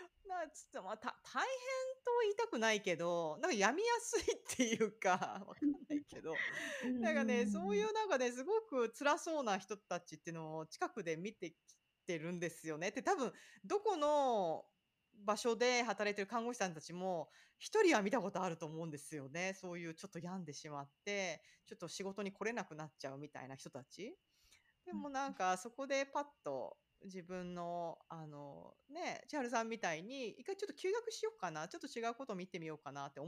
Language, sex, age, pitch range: Japanese, female, 40-59, 170-285 Hz